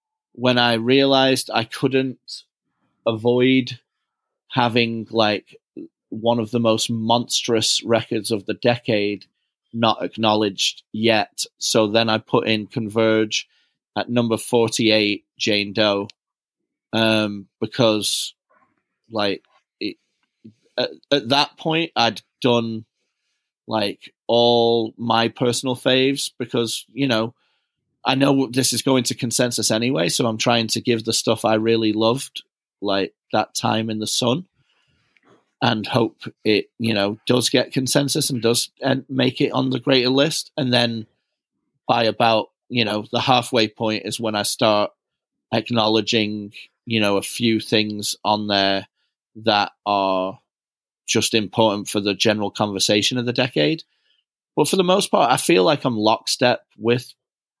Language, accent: English, British